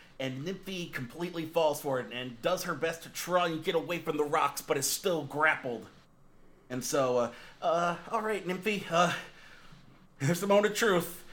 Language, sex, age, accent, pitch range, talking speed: English, male, 30-49, American, 140-170 Hz, 185 wpm